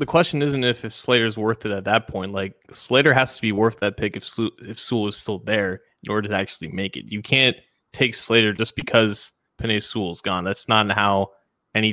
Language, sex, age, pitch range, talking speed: English, male, 20-39, 105-125 Hz, 220 wpm